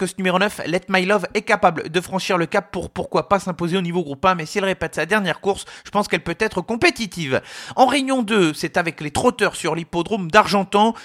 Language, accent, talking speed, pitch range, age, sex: French, French, 230 wpm, 175-215 Hz, 40-59, male